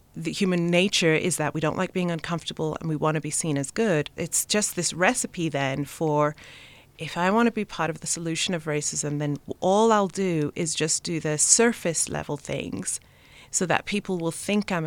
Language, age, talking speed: English, 30-49, 210 wpm